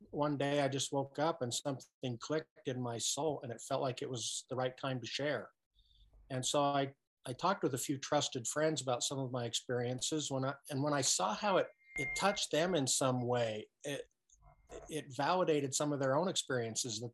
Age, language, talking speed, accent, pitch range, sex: 50-69, English, 215 wpm, American, 125-150 Hz, male